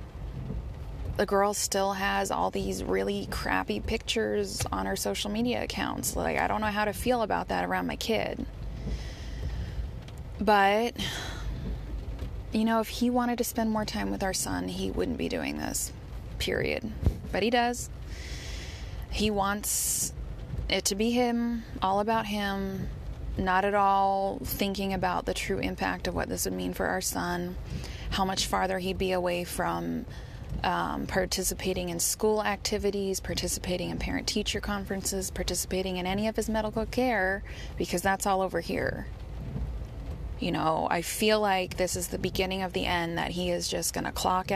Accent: American